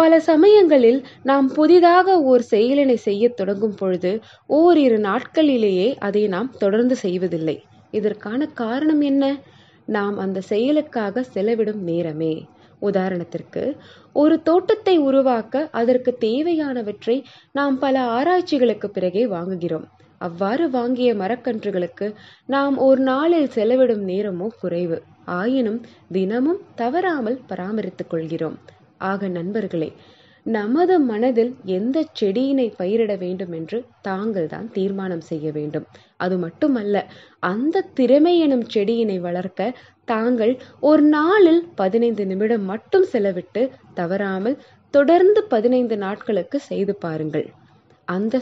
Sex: female